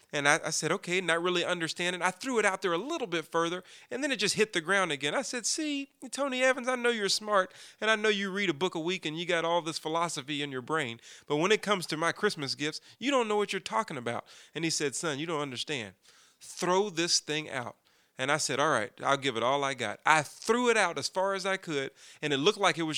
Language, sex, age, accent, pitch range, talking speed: English, male, 30-49, American, 145-190 Hz, 270 wpm